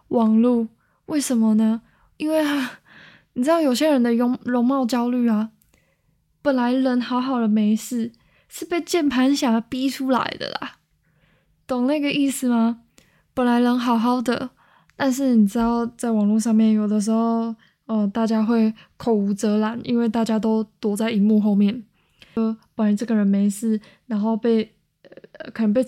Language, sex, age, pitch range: Chinese, female, 10-29, 220-255 Hz